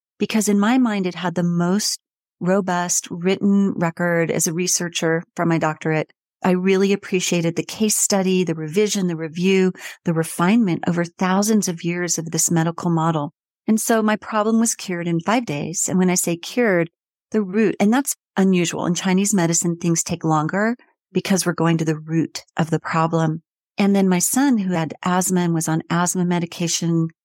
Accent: American